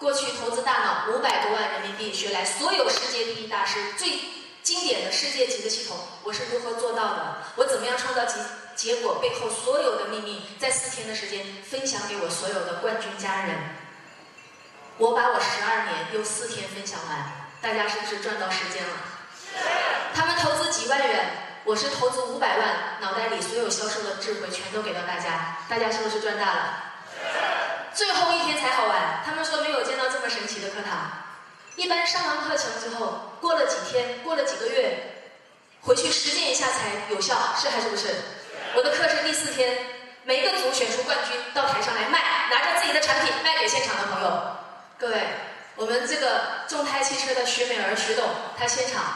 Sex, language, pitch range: female, Chinese, 210-320 Hz